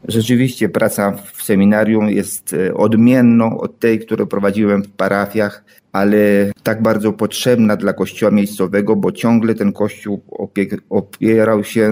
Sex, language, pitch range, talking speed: male, Polish, 100-110 Hz, 125 wpm